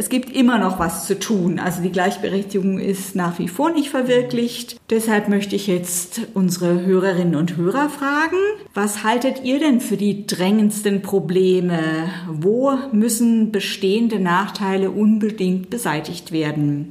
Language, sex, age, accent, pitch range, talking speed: German, female, 50-69, German, 185-245 Hz, 140 wpm